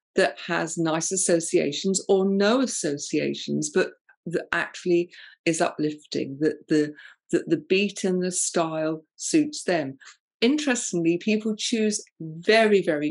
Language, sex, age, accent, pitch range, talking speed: English, female, 50-69, British, 165-225 Hz, 125 wpm